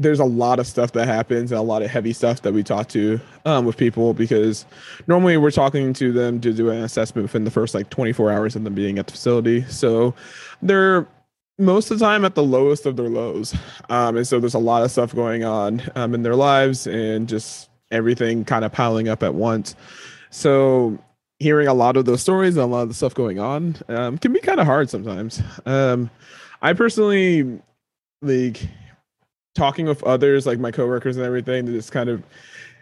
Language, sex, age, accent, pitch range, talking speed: English, male, 20-39, American, 115-145 Hz, 210 wpm